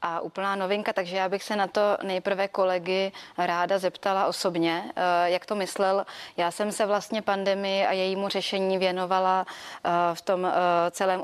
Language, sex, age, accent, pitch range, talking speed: Czech, female, 20-39, native, 175-195 Hz, 155 wpm